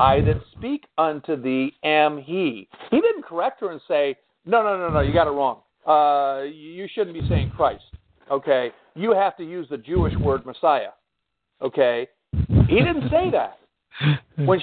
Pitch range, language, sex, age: 135-195 Hz, English, male, 50-69